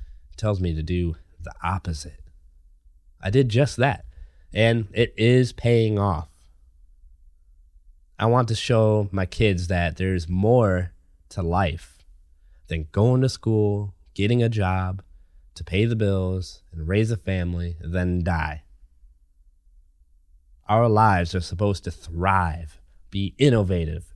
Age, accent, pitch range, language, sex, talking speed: 20-39, American, 70-100 Hz, English, male, 125 wpm